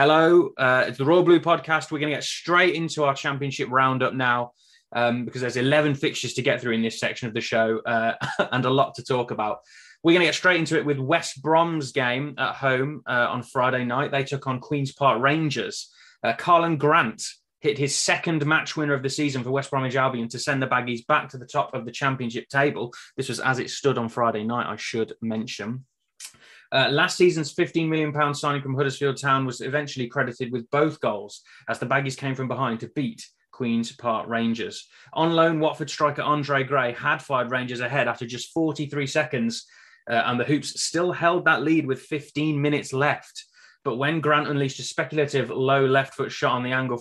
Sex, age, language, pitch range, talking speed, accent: male, 20-39, English, 125-155 Hz, 210 wpm, British